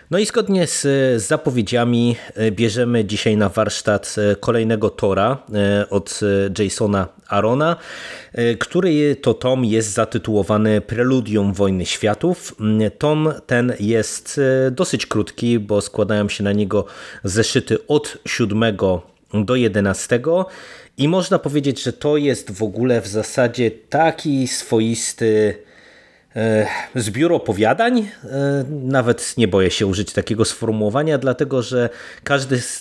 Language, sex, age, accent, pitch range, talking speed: Polish, male, 30-49, native, 110-135 Hz, 115 wpm